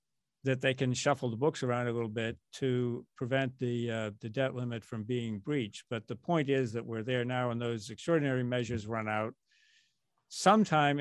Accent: American